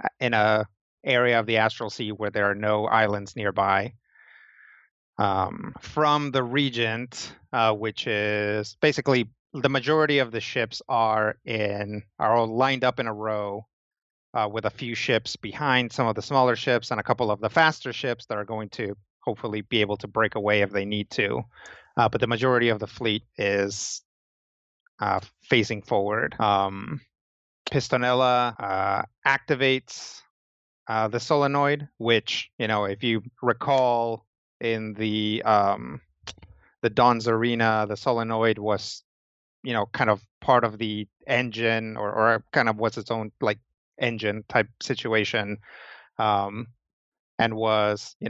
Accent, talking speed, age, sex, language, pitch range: American, 150 wpm, 30-49, male, English, 105-125 Hz